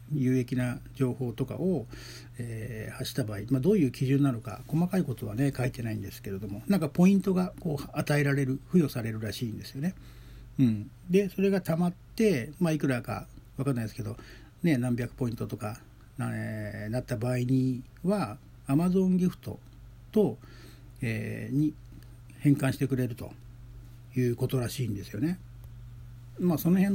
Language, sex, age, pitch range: Japanese, male, 60-79, 120-145 Hz